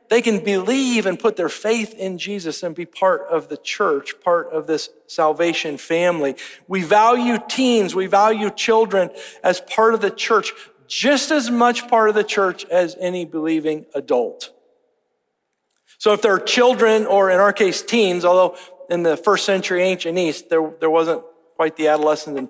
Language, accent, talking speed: English, American, 175 wpm